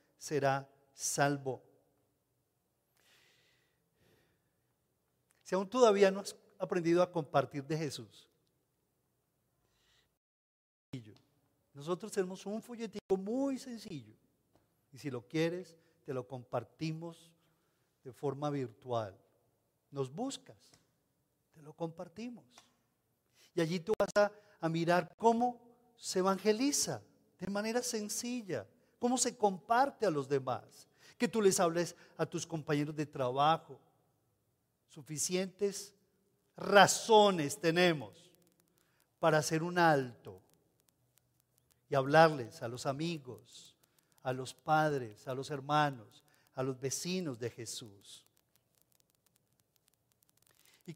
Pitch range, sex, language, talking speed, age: 140-190 Hz, male, Spanish, 100 wpm, 40-59